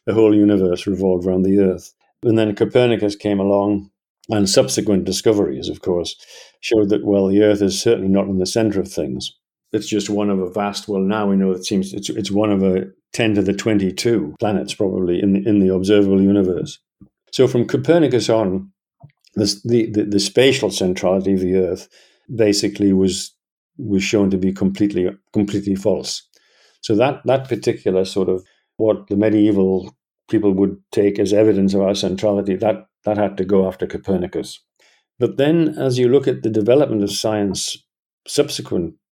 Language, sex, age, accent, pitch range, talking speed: English, male, 50-69, British, 95-110 Hz, 175 wpm